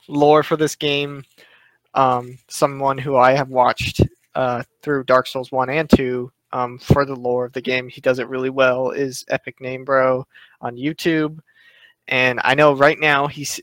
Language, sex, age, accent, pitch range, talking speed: English, male, 20-39, American, 125-140 Hz, 180 wpm